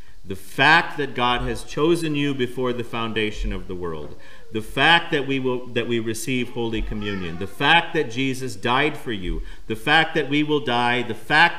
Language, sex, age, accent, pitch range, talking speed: English, male, 50-69, American, 110-150 Hz, 185 wpm